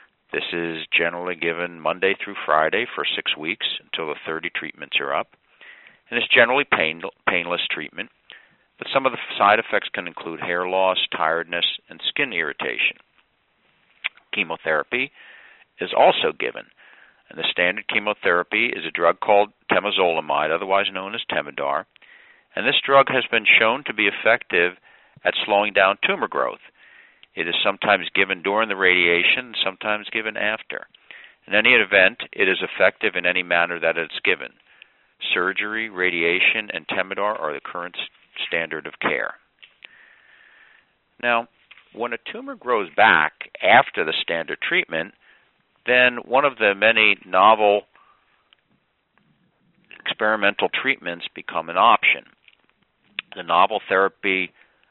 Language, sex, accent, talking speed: English, male, American, 135 wpm